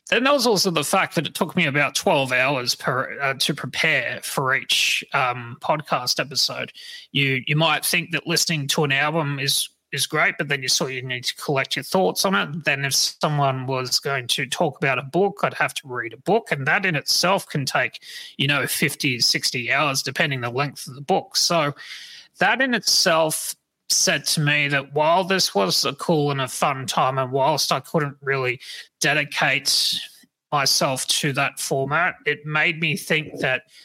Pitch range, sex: 140-180 Hz, male